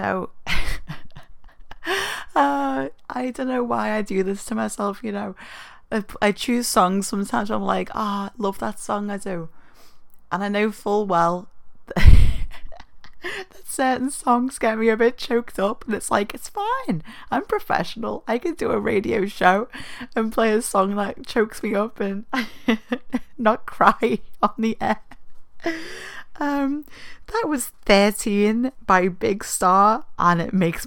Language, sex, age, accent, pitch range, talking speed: English, female, 30-49, British, 170-225 Hz, 155 wpm